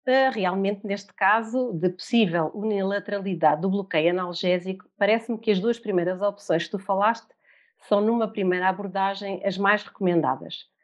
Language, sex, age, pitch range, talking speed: Portuguese, female, 40-59, 185-225 Hz, 140 wpm